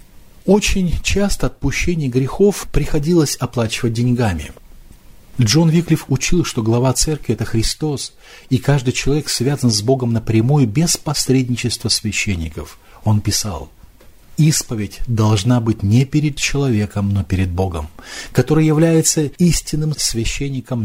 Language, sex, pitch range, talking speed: English, male, 110-145 Hz, 120 wpm